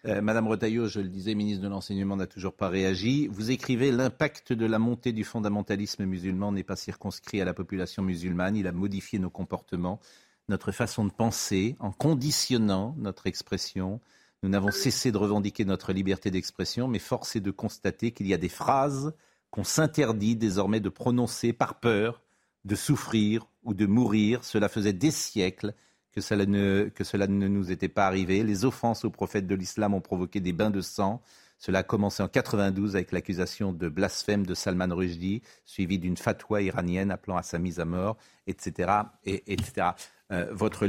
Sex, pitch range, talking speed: male, 95-110 Hz, 185 wpm